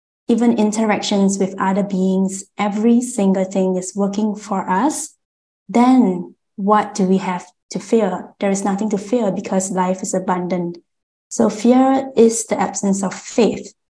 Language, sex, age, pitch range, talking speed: English, female, 20-39, 185-220 Hz, 150 wpm